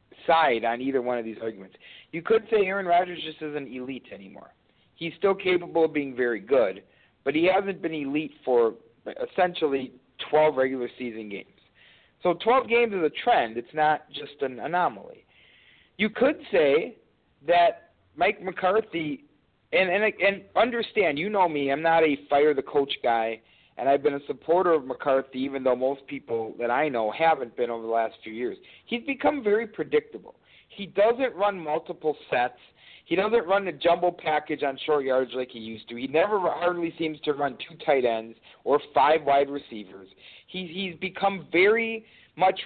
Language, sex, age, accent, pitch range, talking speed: English, male, 40-59, American, 135-195 Hz, 175 wpm